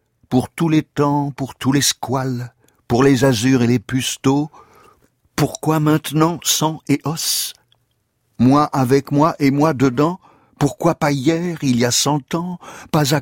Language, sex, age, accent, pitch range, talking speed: French, male, 60-79, French, 115-140 Hz, 160 wpm